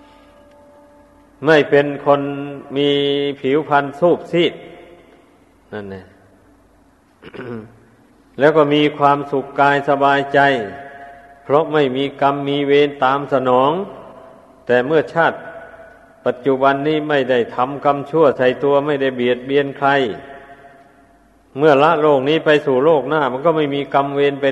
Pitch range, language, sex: 130-145 Hz, Thai, male